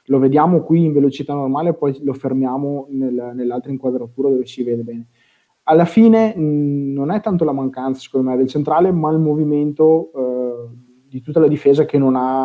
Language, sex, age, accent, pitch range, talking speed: Italian, male, 20-39, native, 130-155 Hz, 185 wpm